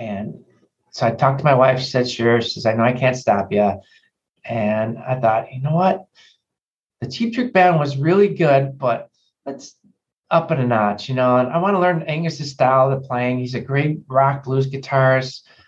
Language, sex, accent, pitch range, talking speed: English, male, American, 125-160 Hz, 210 wpm